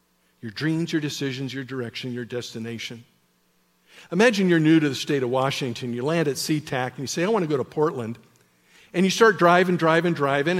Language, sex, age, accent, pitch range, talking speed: English, male, 50-69, American, 120-200 Hz, 200 wpm